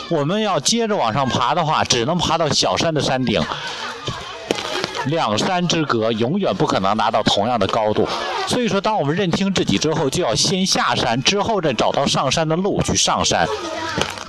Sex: male